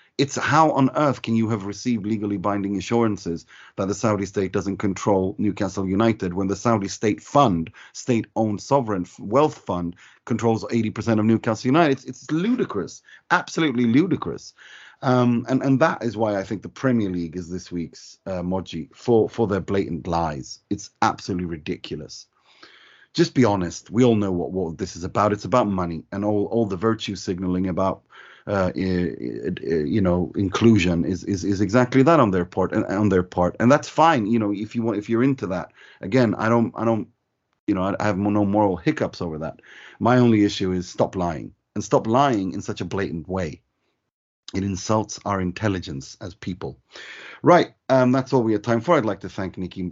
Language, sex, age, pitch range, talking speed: English, male, 30-49, 95-115 Hz, 190 wpm